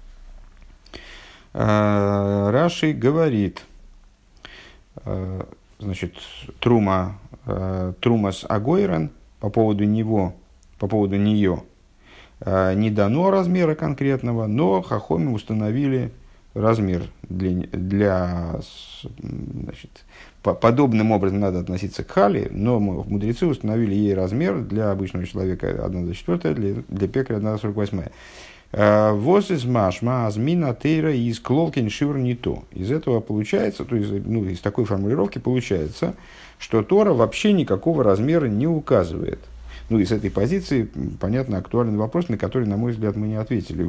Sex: male